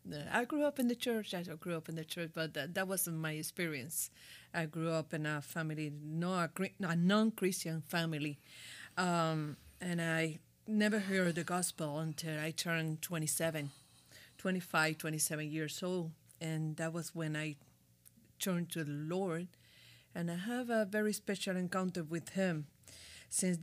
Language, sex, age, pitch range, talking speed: English, female, 40-59, 155-185 Hz, 155 wpm